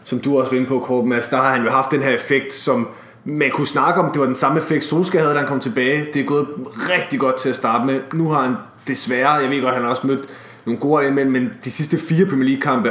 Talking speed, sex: 280 wpm, male